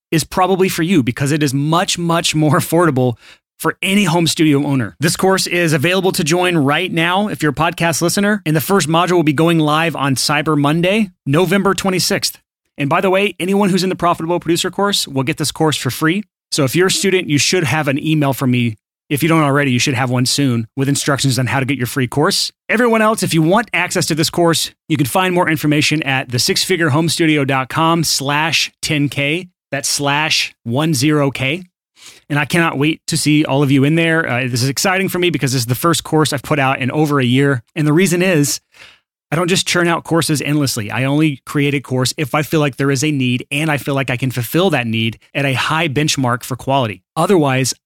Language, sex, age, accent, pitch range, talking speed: English, male, 30-49, American, 140-170 Hz, 225 wpm